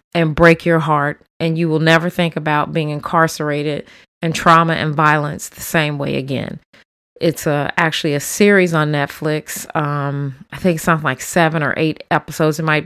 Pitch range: 150-175 Hz